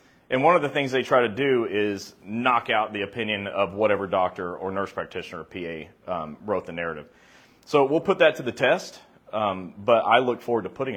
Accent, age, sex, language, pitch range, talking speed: American, 30-49, male, English, 105-145 Hz, 220 wpm